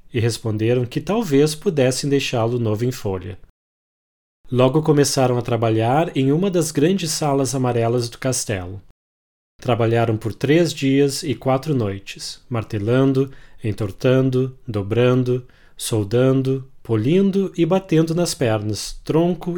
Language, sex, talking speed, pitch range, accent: English, male, 115 wpm, 110-145 Hz, Brazilian